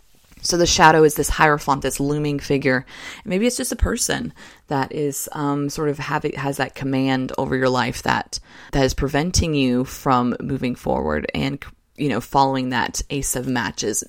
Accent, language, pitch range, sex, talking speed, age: American, English, 135-170 Hz, female, 180 wpm, 20-39